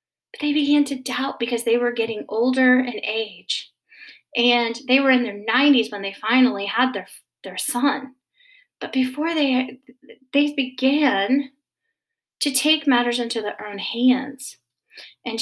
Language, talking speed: English, 145 wpm